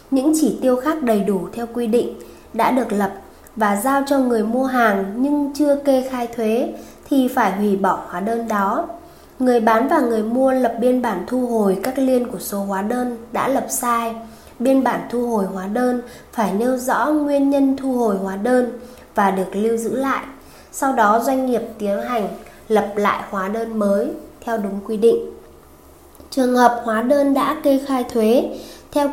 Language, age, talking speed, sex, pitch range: Vietnamese, 20-39, 190 wpm, female, 215-265 Hz